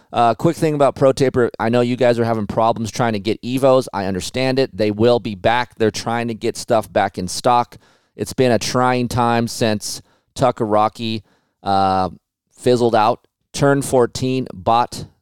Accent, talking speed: American, 180 wpm